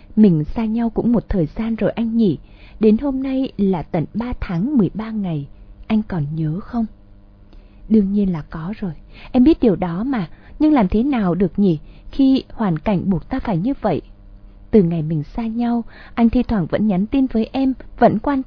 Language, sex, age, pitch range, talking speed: Vietnamese, female, 20-39, 180-245 Hz, 200 wpm